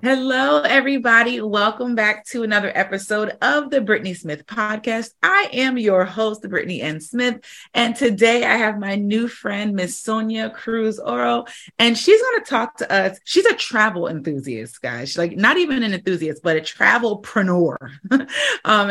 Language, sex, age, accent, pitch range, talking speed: English, female, 30-49, American, 175-235 Hz, 160 wpm